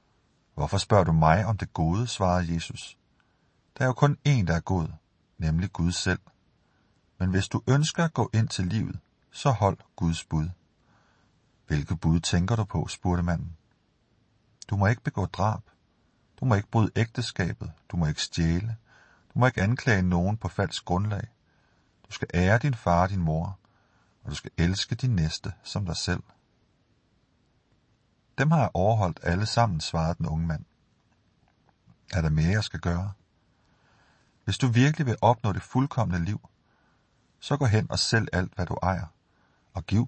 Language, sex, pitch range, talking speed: Danish, male, 85-115 Hz, 170 wpm